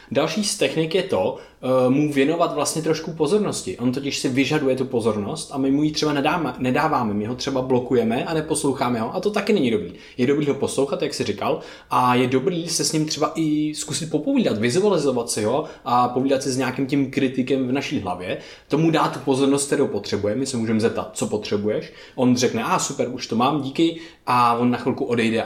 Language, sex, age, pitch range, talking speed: Czech, male, 20-39, 120-150 Hz, 210 wpm